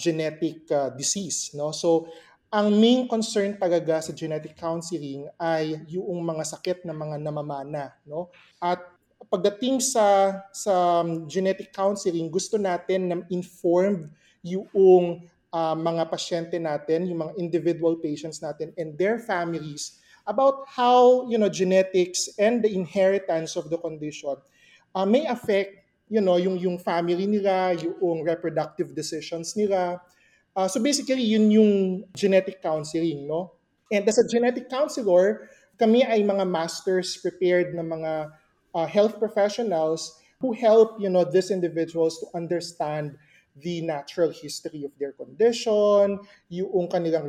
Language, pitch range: English, 165-200 Hz